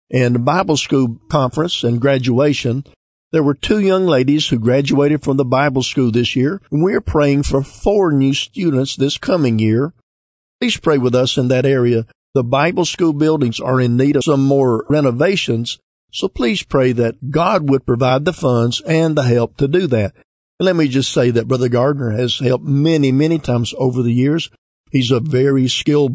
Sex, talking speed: male, 190 wpm